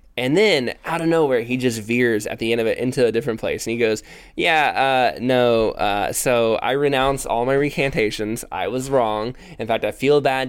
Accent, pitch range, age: American, 110-130 Hz, 20-39